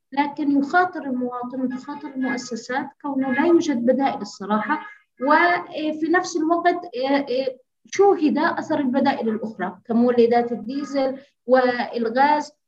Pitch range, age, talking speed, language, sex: 235-285 Hz, 20-39, 95 wpm, Arabic, female